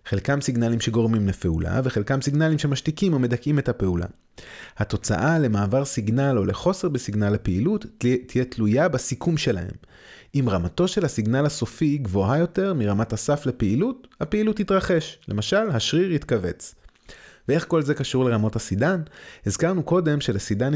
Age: 30-49